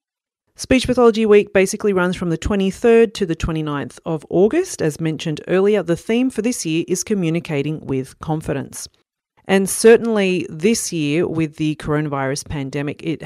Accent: Australian